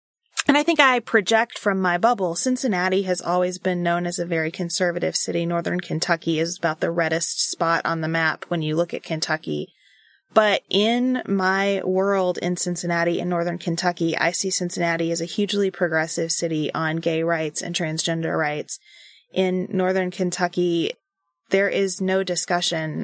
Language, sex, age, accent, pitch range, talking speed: English, female, 20-39, American, 170-195 Hz, 165 wpm